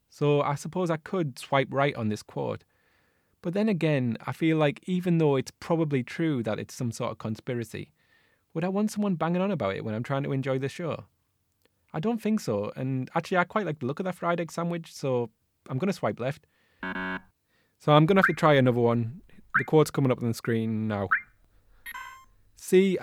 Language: English